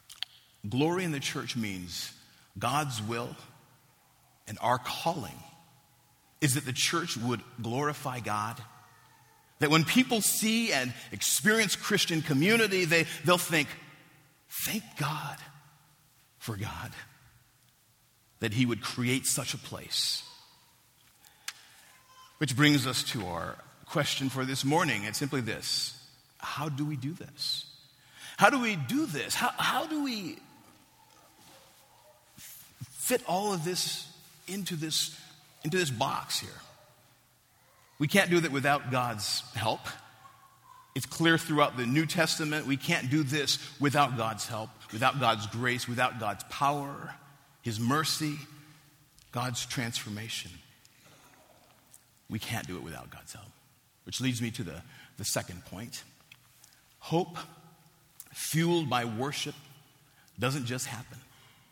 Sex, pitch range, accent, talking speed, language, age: male, 125-155 Hz, American, 125 wpm, English, 50-69